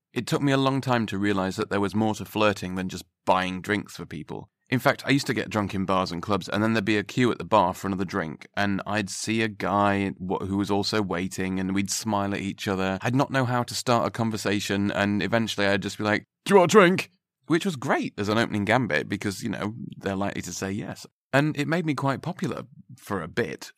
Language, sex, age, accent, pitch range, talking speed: English, male, 30-49, British, 100-130 Hz, 255 wpm